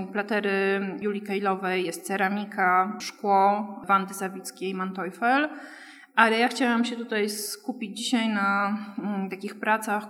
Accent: native